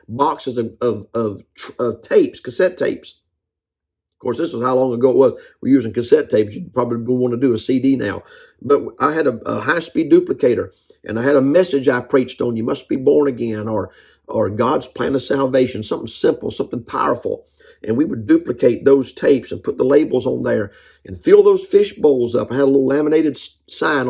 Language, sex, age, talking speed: English, male, 50-69, 210 wpm